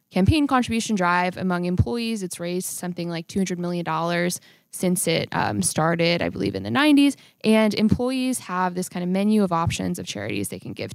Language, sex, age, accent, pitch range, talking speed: English, female, 20-39, American, 175-200 Hz, 195 wpm